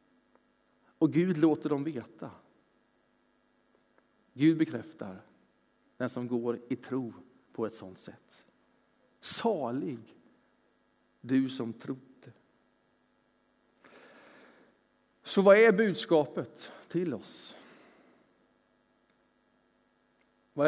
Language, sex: Swedish, male